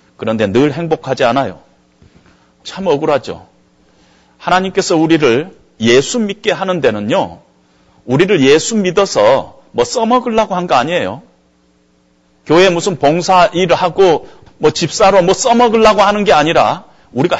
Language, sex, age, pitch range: Korean, male, 40-59, 145-225 Hz